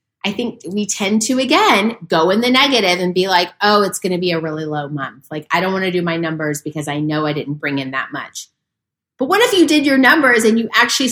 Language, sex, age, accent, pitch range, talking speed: English, female, 30-49, American, 170-240 Hz, 265 wpm